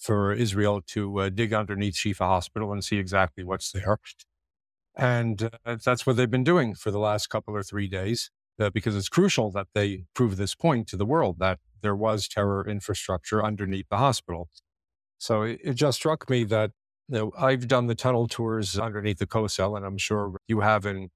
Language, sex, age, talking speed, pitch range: English, male, 50-69, 195 wpm, 100-120 Hz